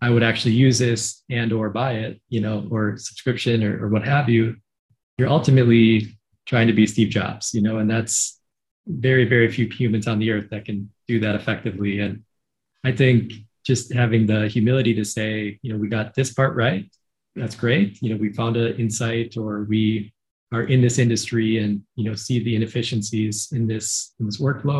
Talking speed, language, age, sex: 200 wpm, English, 20-39, male